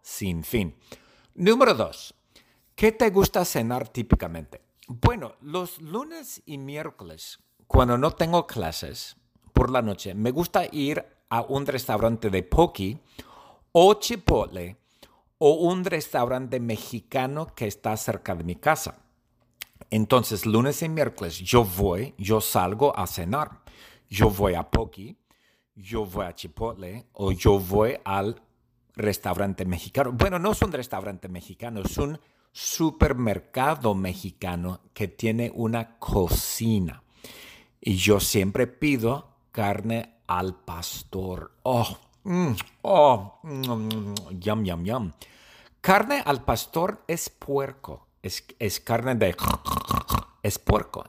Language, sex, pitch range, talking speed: English, male, 100-140 Hz, 120 wpm